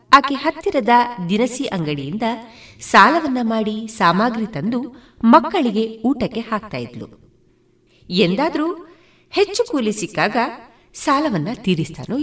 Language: Kannada